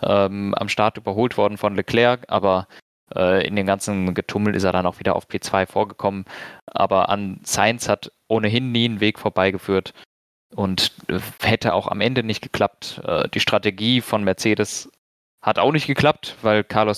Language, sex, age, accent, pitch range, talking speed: German, male, 20-39, German, 105-130 Hz, 175 wpm